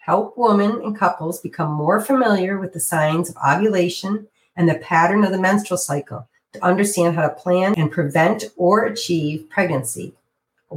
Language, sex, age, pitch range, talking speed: English, female, 50-69, 160-205 Hz, 165 wpm